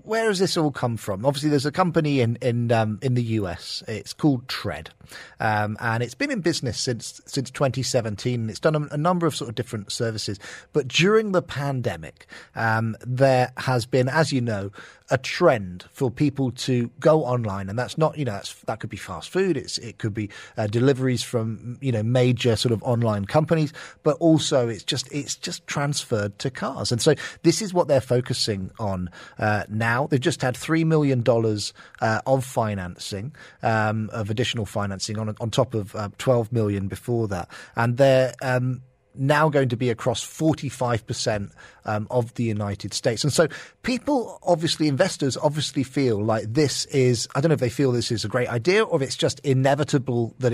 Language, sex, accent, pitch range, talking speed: English, male, British, 115-150 Hz, 195 wpm